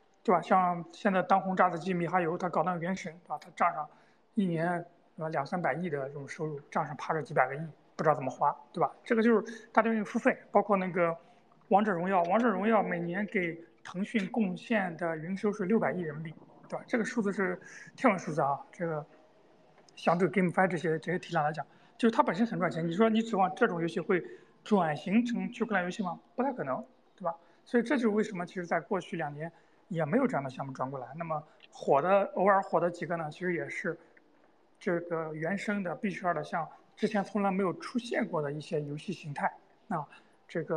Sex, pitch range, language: male, 165-210 Hz, Chinese